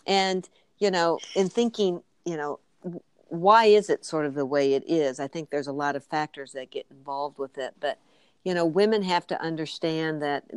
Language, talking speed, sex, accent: English, 205 wpm, female, American